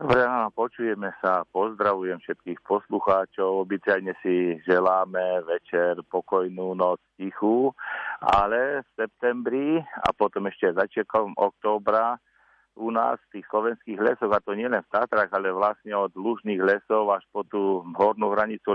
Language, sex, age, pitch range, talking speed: Slovak, male, 50-69, 100-115 Hz, 140 wpm